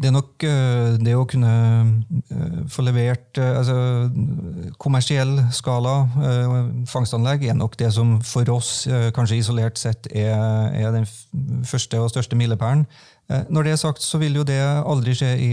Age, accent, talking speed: 30-49, Swedish, 155 wpm